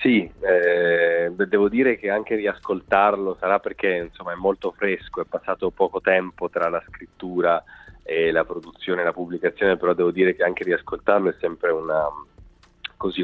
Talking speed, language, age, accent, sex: 165 wpm, Italian, 30-49, native, male